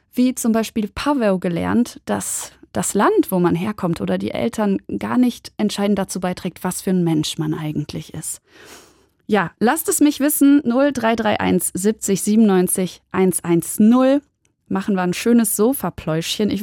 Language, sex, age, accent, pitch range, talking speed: German, female, 20-39, German, 185-245 Hz, 150 wpm